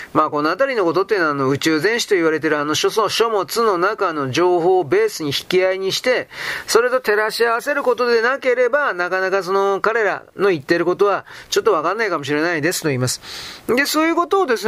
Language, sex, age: Japanese, male, 40-59